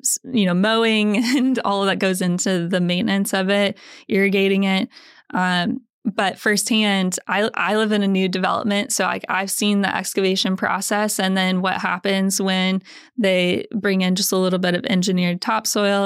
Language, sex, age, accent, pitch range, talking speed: English, female, 20-39, American, 185-230 Hz, 175 wpm